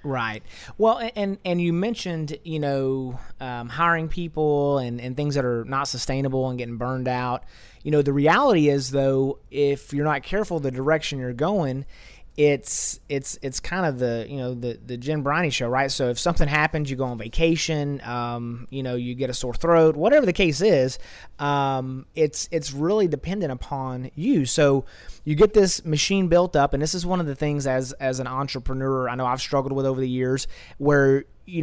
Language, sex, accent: English, male, American